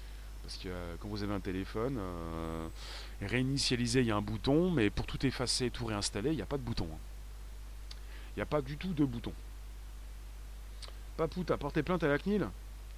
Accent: French